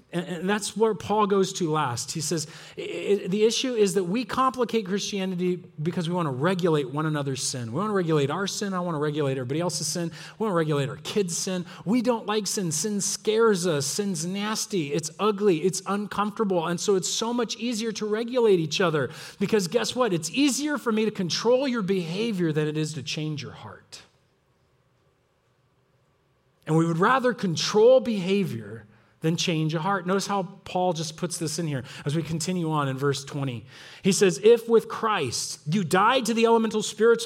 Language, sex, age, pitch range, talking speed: English, male, 30-49, 155-205 Hz, 195 wpm